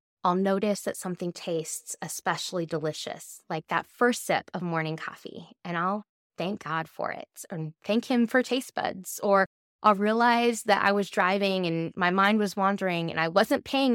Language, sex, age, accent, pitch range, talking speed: English, female, 20-39, American, 175-225 Hz, 180 wpm